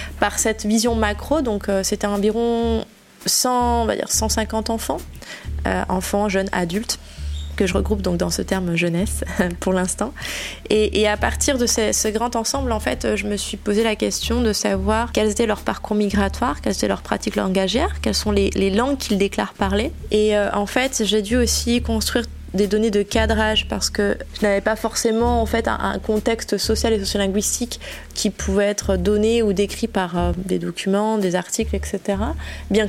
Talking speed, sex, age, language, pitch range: 185 wpm, female, 20-39, French, 195-230 Hz